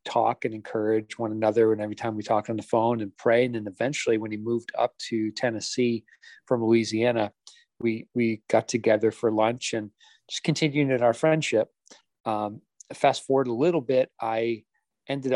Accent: American